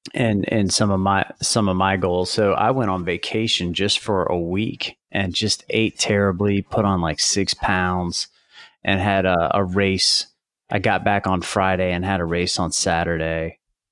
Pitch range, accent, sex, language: 85-100 Hz, American, male, English